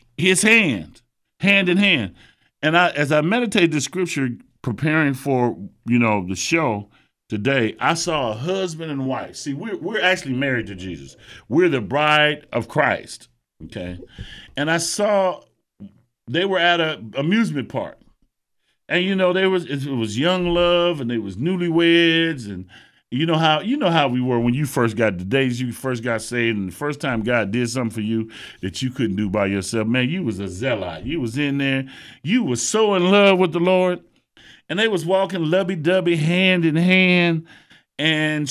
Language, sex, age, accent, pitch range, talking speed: English, male, 50-69, American, 125-185 Hz, 185 wpm